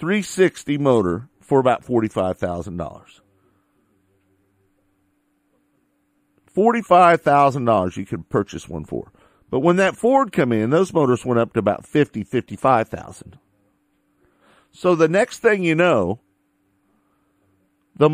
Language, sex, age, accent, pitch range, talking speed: English, male, 50-69, American, 100-160 Hz, 100 wpm